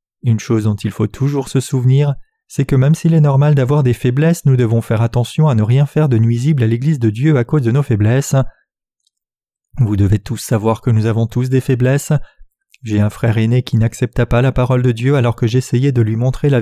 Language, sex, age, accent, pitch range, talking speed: French, male, 30-49, French, 115-140 Hz, 230 wpm